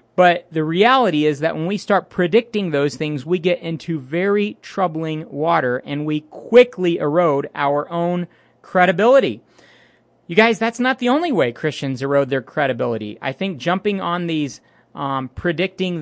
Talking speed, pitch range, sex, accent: 155 wpm, 160-215 Hz, male, American